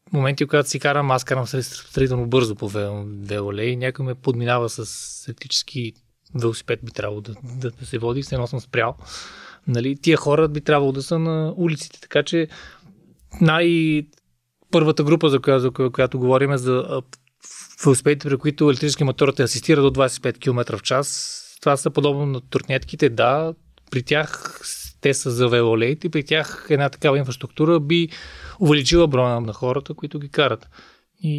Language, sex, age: Bulgarian, male, 20-39